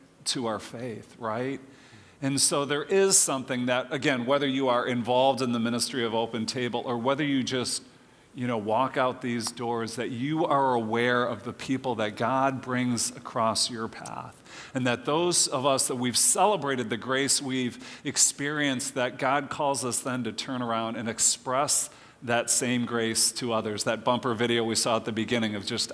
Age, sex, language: 40-59, male, English